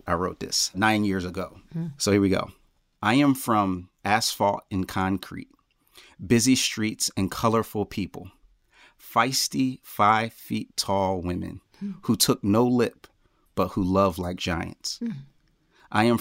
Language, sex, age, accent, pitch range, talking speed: English, male, 30-49, American, 95-115 Hz, 135 wpm